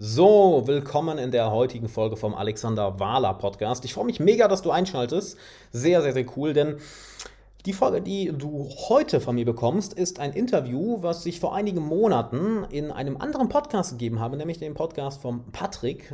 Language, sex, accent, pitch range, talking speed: German, male, German, 120-170 Hz, 175 wpm